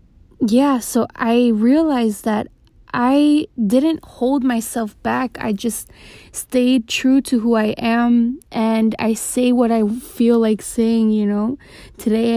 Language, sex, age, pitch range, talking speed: English, female, 20-39, 205-230 Hz, 140 wpm